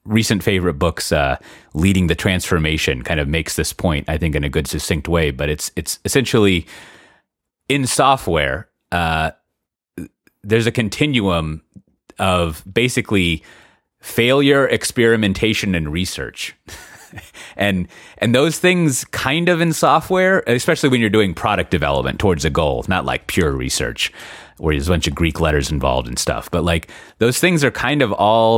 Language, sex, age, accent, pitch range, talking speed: English, male, 30-49, American, 80-110 Hz, 155 wpm